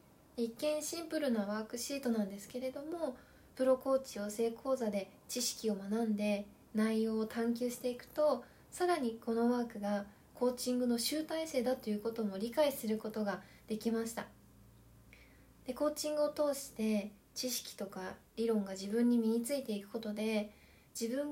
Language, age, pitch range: Japanese, 20-39, 215-270 Hz